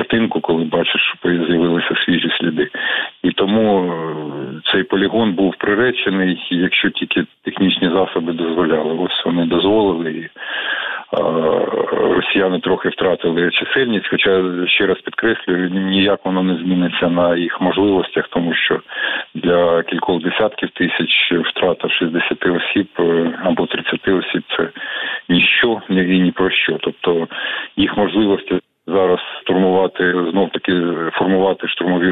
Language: Ukrainian